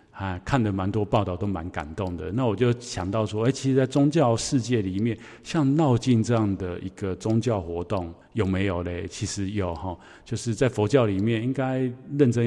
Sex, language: male, Chinese